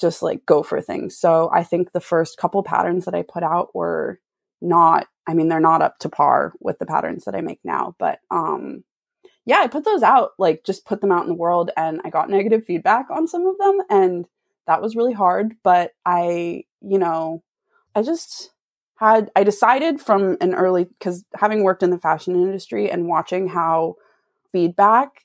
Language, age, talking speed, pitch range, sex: English, 20-39, 200 wpm, 165-220 Hz, female